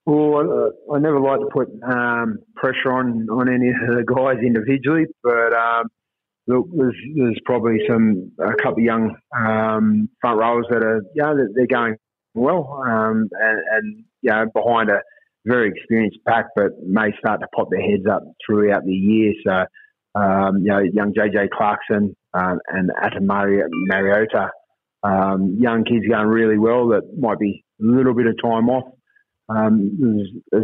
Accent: Australian